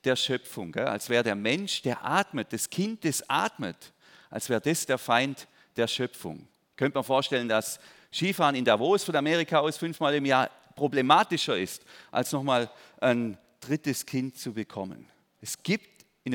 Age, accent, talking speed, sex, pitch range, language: 40-59, German, 160 wpm, male, 125-165 Hz, German